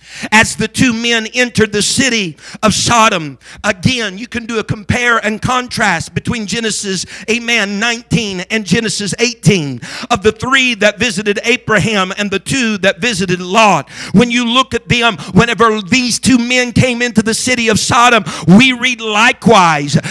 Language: English